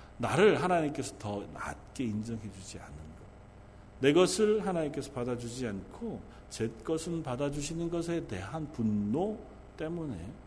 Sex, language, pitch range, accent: male, Korean, 100-135 Hz, native